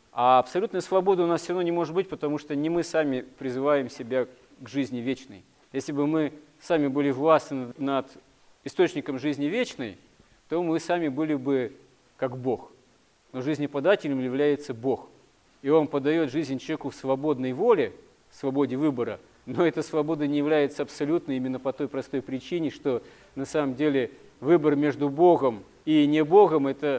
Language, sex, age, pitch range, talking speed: Russian, male, 40-59, 130-155 Hz, 165 wpm